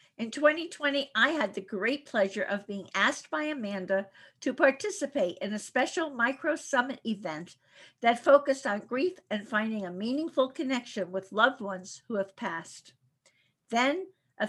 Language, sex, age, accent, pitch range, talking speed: English, female, 50-69, American, 190-270 Hz, 150 wpm